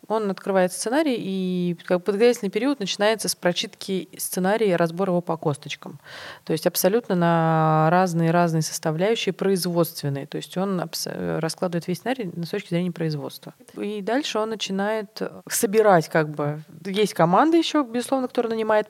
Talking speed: 145 wpm